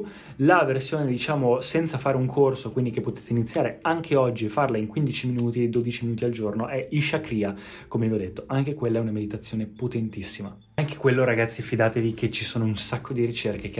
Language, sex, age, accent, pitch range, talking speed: Italian, male, 20-39, native, 110-140 Hz, 200 wpm